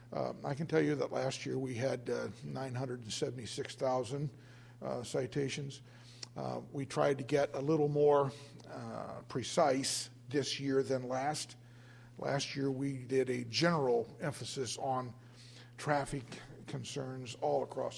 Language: English